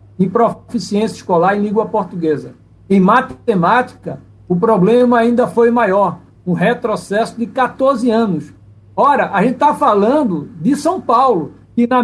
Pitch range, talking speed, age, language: 185-245 Hz, 145 wpm, 60-79, Portuguese